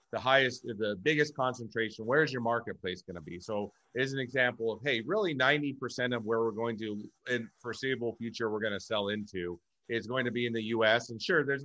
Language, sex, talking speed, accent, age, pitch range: English, male, 220 wpm, American, 30-49, 105-125 Hz